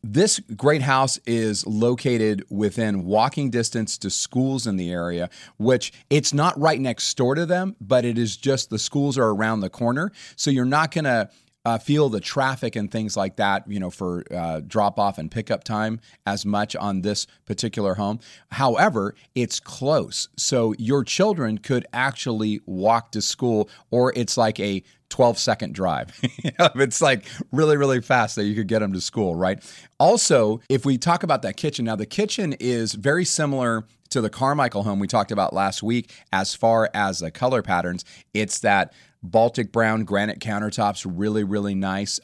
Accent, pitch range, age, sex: American, 105-130 Hz, 30-49, male